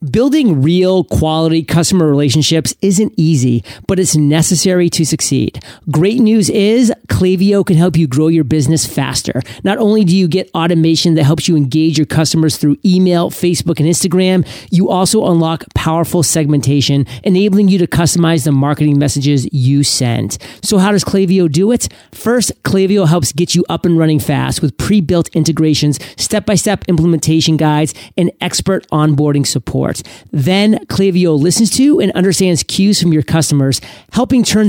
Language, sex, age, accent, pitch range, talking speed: English, male, 30-49, American, 150-185 Hz, 155 wpm